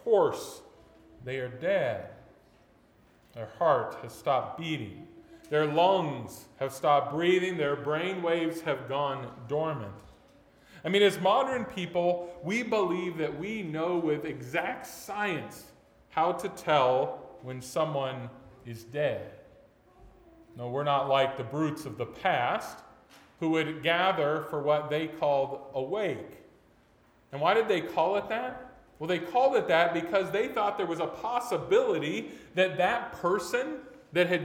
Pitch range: 140-195 Hz